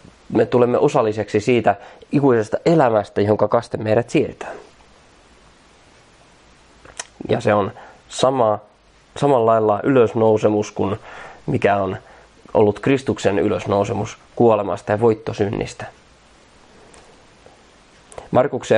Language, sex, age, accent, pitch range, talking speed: Finnish, male, 20-39, native, 105-120 Hz, 85 wpm